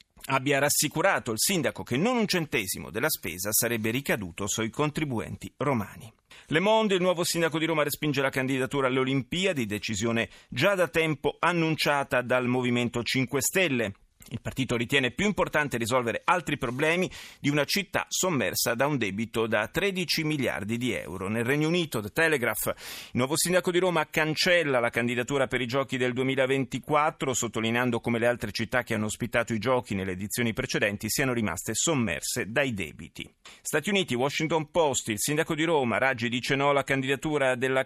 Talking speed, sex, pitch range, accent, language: 170 wpm, male, 120-160 Hz, native, Italian